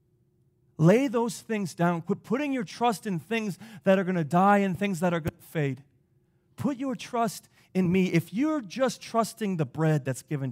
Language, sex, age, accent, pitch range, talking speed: English, male, 30-49, American, 145-210 Hz, 200 wpm